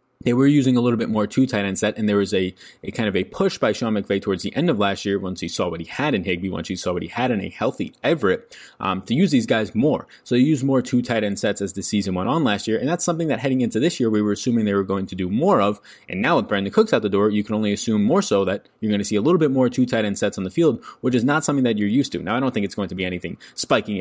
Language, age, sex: English, 20-39, male